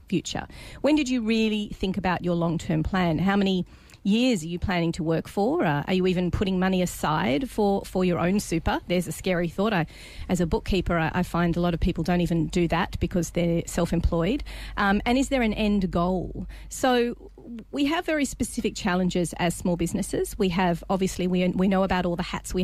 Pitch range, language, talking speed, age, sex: 175-200 Hz, English, 210 wpm, 40-59, female